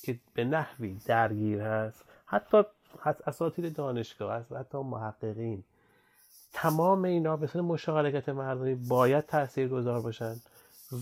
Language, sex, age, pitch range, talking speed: Persian, male, 30-49, 115-145 Hz, 115 wpm